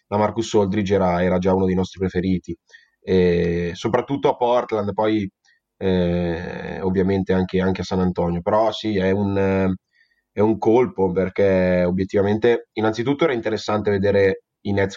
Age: 20-39